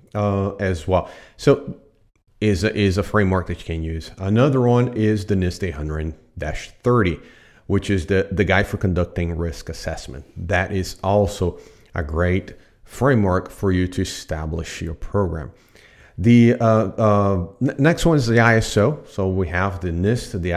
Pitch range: 90-110 Hz